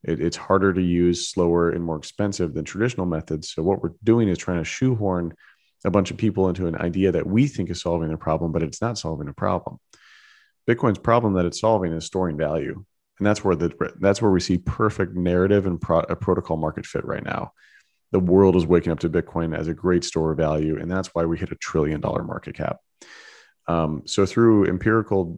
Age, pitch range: 30-49, 80-95 Hz